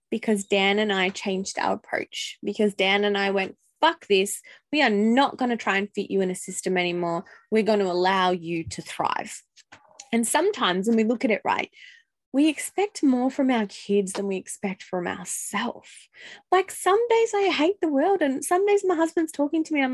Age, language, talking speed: 10-29, English, 210 wpm